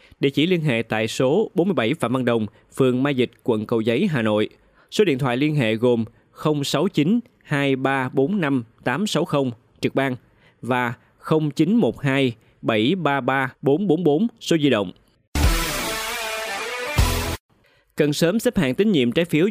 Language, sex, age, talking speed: Vietnamese, male, 20-39, 125 wpm